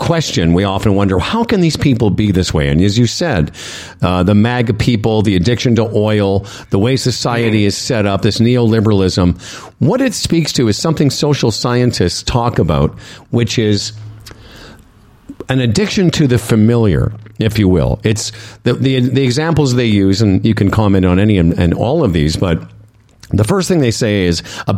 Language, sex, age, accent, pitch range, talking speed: English, male, 50-69, American, 105-150 Hz, 185 wpm